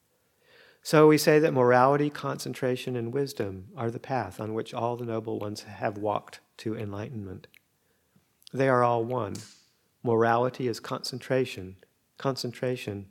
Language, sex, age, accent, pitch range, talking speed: English, male, 40-59, American, 105-130 Hz, 135 wpm